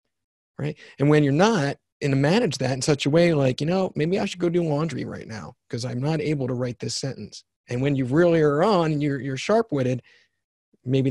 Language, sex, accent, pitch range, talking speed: English, male, American, 125-160 Hz, 230 wpm